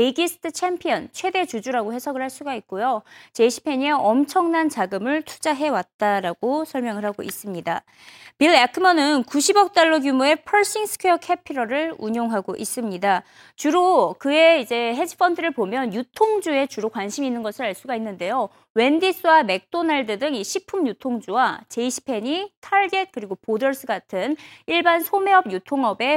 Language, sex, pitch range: Korean, female, 225-340 Hz